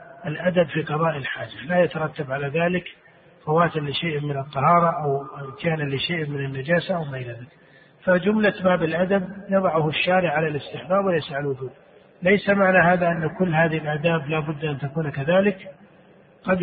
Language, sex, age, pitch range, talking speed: Arabic, male, 50-69, 155-185 Hz, 150 wpm